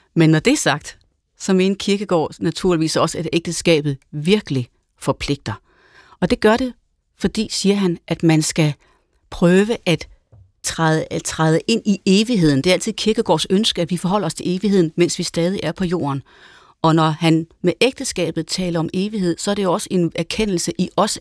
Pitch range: 155-195 Hz